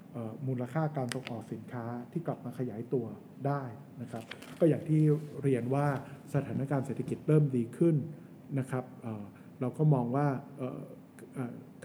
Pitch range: 125-155 Hz